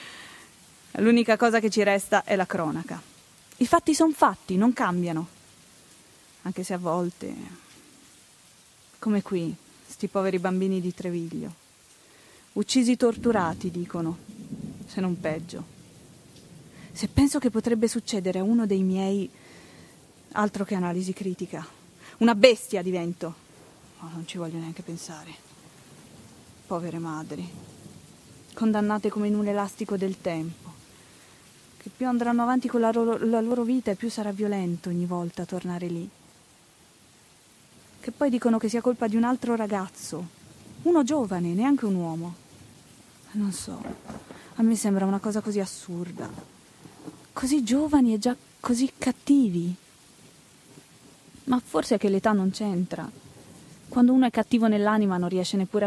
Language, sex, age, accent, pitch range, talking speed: Italian, female, 20-39, native, 175-230 Hz, 135 wpm